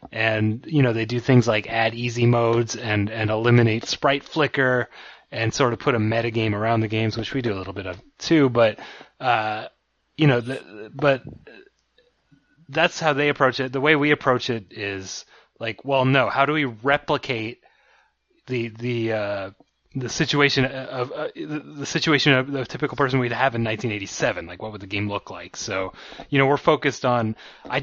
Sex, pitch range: male, 115-140 Hz